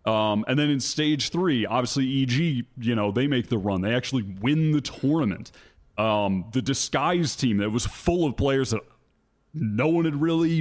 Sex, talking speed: male, 185 wpm